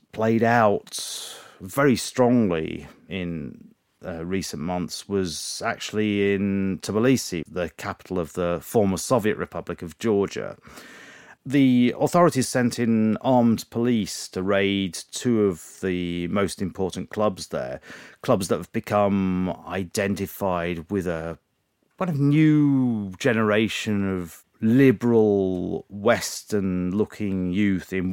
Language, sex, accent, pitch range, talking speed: English, male, British, 90-110 Hz, 110 wpm